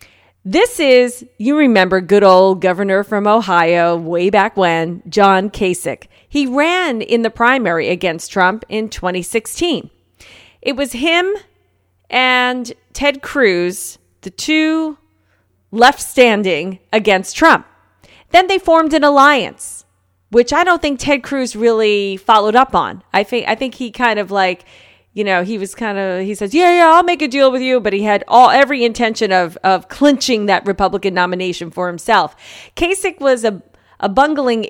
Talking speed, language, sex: 160 wpm, English, female